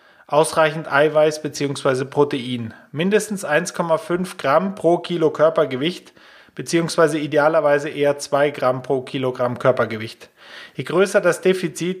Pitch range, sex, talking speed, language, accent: 140-175 Hz, male, 110 wpm, German, German